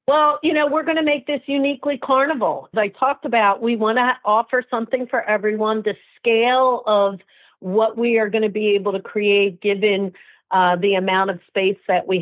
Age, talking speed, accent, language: 50-69, 200 wpm, American, English